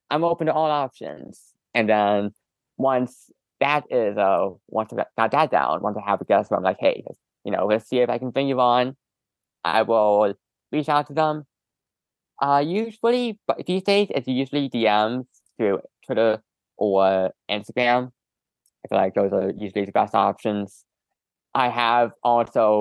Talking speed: 170 wpm